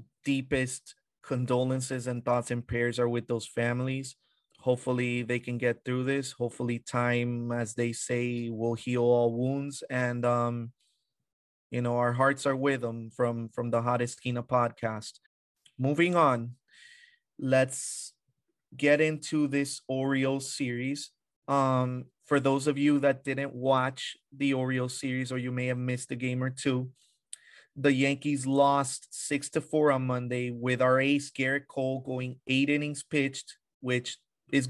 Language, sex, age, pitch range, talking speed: English, male, 30-49, 120-140 Hz, 150 wpm